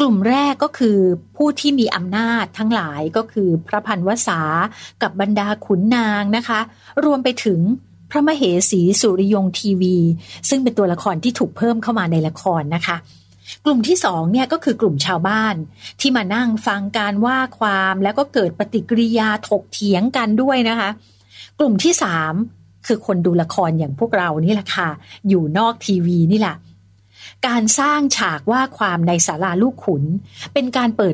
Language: Thai